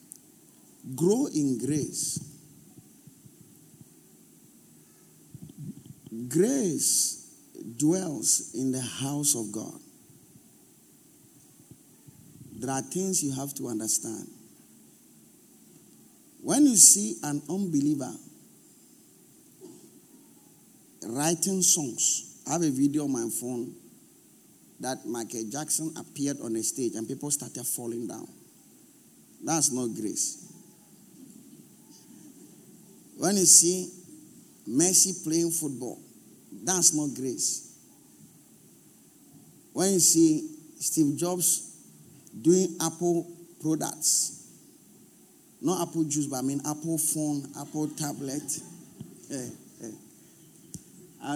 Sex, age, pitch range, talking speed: male, 50-69, 135-170 Hz, 90 wpm